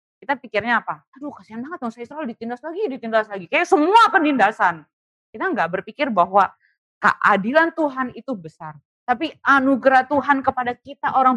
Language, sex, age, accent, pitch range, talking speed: Indonesian, female, 30-49, native, 195-295 Hz, 160 wpm